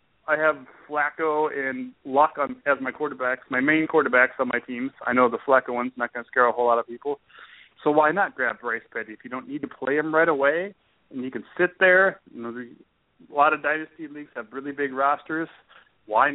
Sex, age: male, 30-49